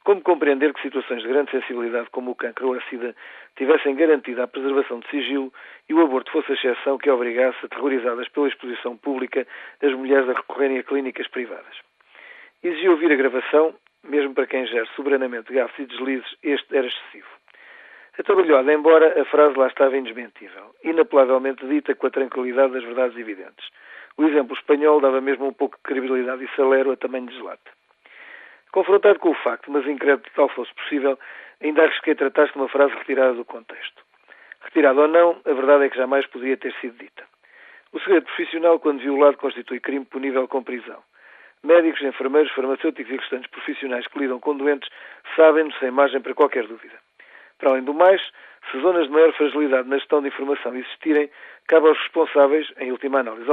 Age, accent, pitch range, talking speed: 40-59, Portuguese, 130-150 Hz, 180 wpm